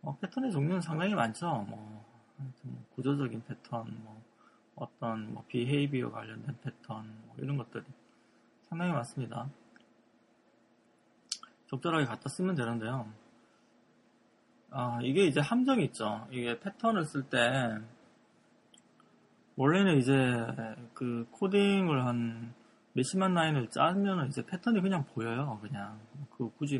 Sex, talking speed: male, 100 wpm